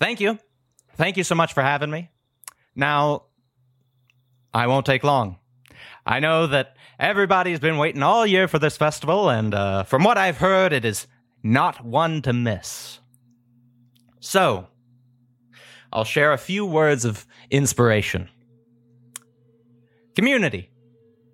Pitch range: 110-145 Hz